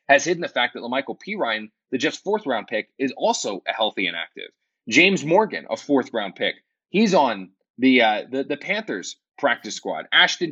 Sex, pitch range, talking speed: male, 115-175 Hz, 200 wpm